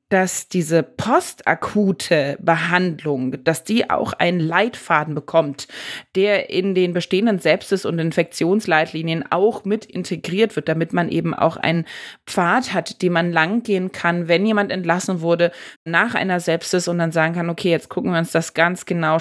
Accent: German